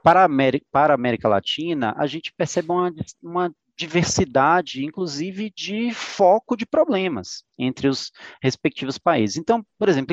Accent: Brazilian